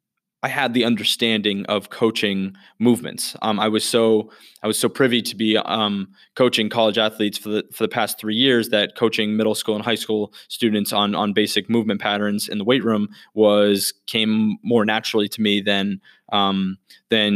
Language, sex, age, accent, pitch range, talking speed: English, male, 20-39, American, 105-115 Hz, 185 wpm